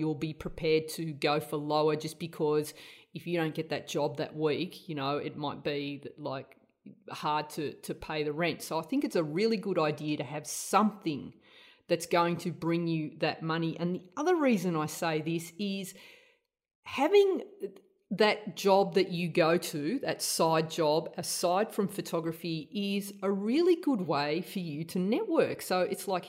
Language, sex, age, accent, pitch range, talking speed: English, female, 30-49, Australian, 160-200 Hz, 185 wpm